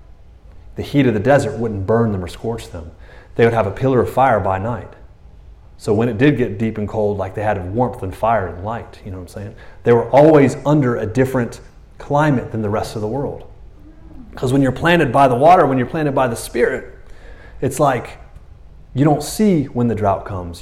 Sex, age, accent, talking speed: male, 30-49, American, 220 wpm